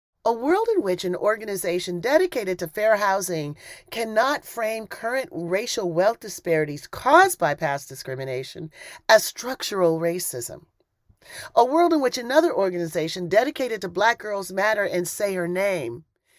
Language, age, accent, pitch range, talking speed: English, 40-59, American, 170-250 Hz, 140 wpm